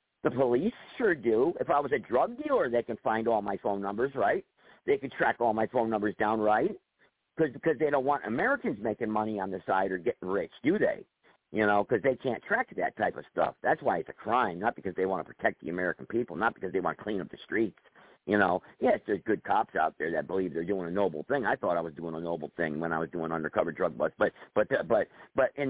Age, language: 50-69, English